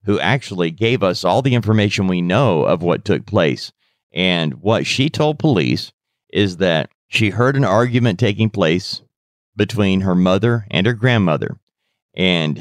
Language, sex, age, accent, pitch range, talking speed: English, male, 40-59, American, 95-125 Hz, 155 wpm